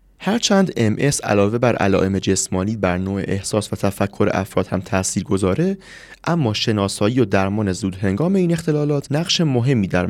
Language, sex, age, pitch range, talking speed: Persian, male, 30-49, 95-150 Hz, 160 wpm